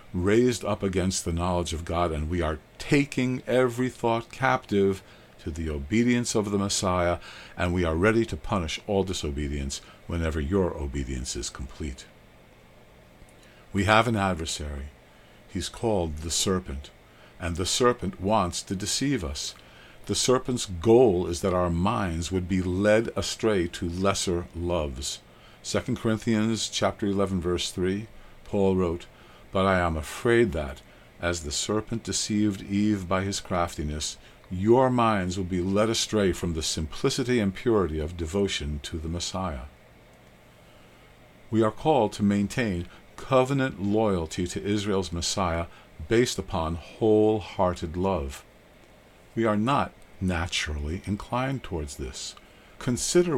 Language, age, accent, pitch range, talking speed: English, 50-69, American, 80-105 Hz, 135 wpm